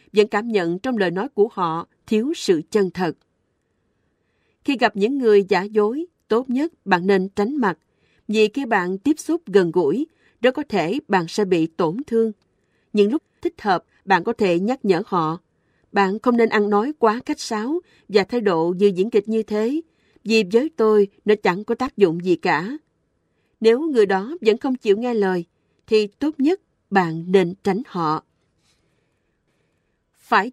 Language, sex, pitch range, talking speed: Vietnamese, female, 190-240 Hz, 180 wpm